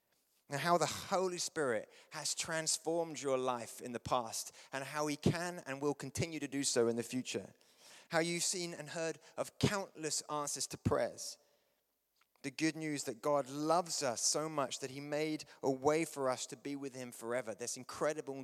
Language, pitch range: English, 130-165 Hz